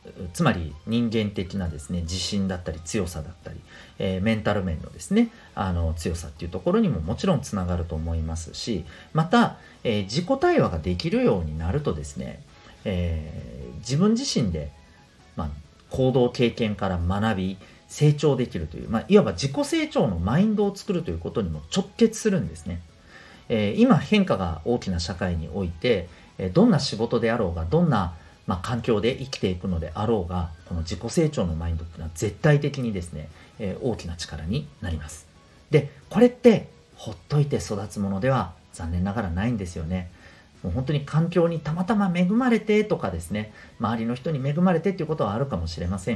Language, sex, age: Japanese, male, 40-59